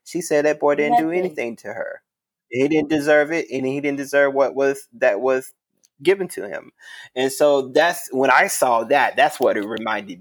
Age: 20-39